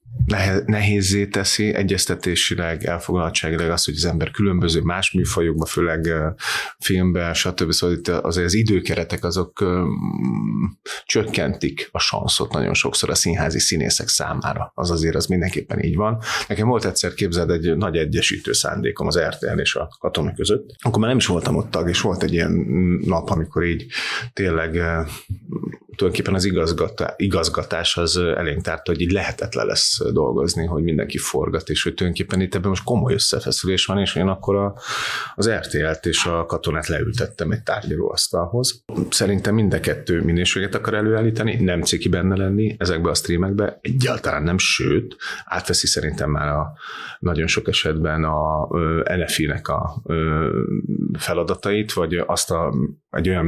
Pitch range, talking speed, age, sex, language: 85-100 Hz, 150 wpm, 30-49, male, Hungarian